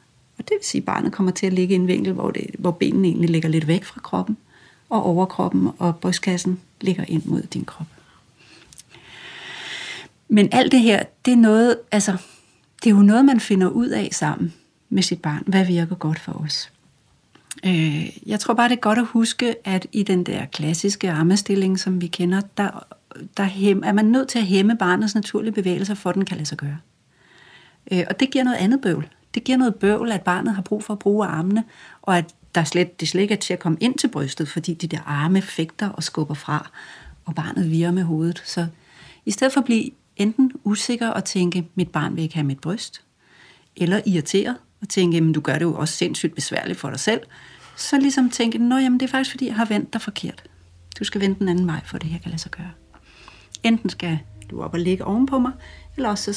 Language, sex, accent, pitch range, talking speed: Danish, female, native, 170-215 Hz, 215 wpm